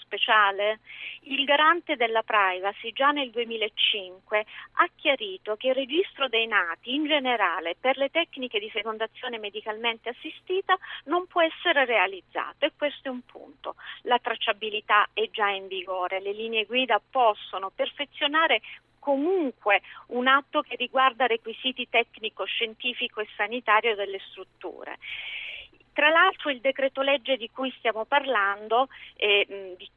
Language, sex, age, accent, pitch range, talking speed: Italian, female, 40-59, native, 210-270 Hz, 130 wpm